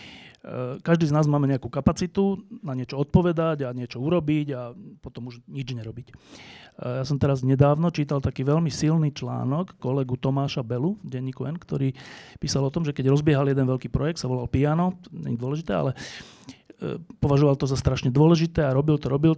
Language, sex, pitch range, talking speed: Slovak, male, 130-150 Hz, 175 wpm